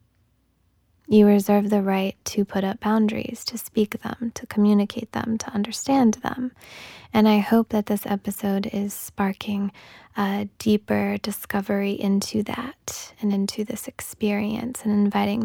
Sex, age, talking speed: female, 20-39, 140 wpm